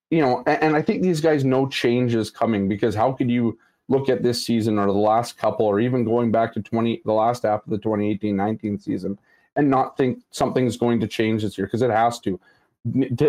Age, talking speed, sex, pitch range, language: 30-49, 230 wpm, male, 105-130 Hz, English